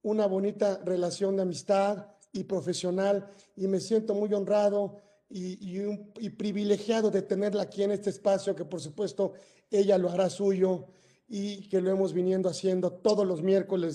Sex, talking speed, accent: male, 170 wpm, Mexican